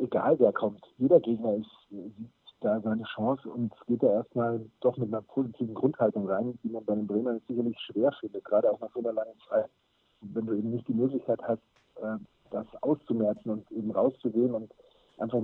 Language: German